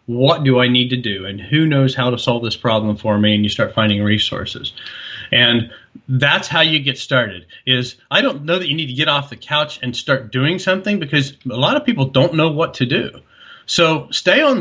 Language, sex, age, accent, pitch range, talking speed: English, male, 40-59, American, 125-155 Hz, 230 wpm